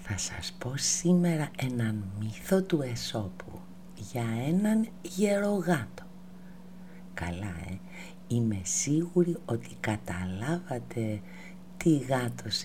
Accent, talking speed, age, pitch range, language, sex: native, 90 wpm, 50-69, 110-185 Hz, Greek, female